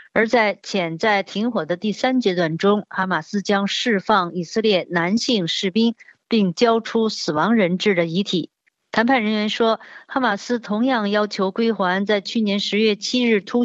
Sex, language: female, Chinese